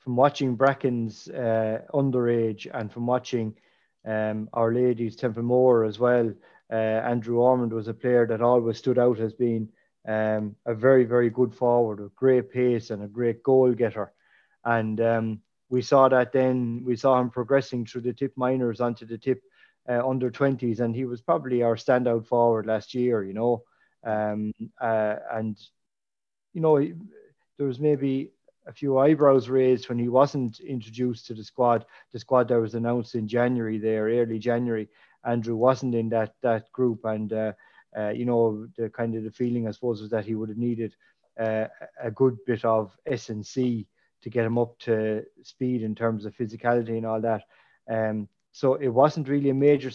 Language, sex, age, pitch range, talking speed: English, male, 30-49, 110-125 Hz, 180 wpm